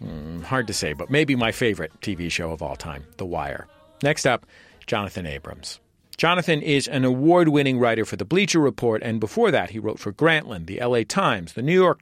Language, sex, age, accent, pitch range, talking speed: English, male, 40-59, American, 100-150 Hz, 200 wpm